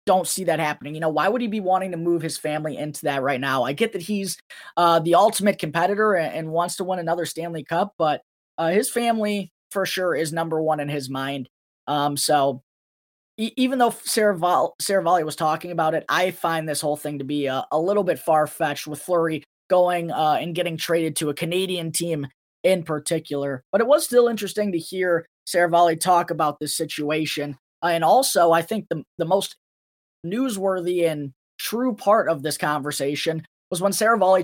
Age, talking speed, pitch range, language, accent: 20-39, 200 wpm, 150-185 Hz, English, American